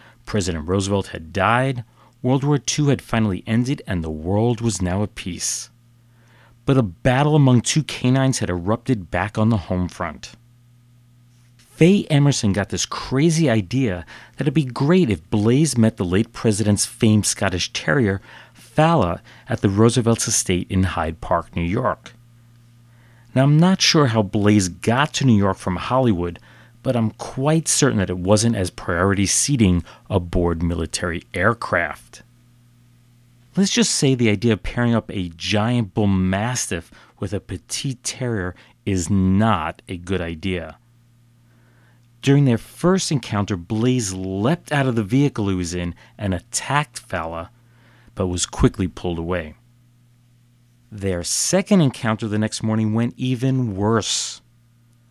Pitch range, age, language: 95-120 Hz, 40-59, English